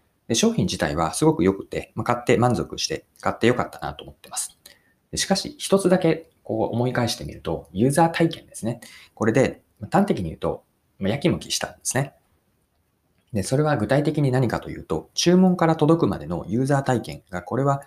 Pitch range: 115-165 Hz